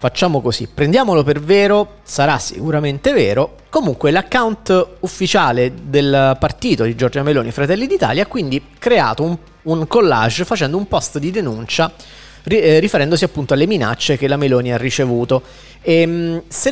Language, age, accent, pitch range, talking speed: Italian, 30-49, native, 135-170 Hz, 145 wpm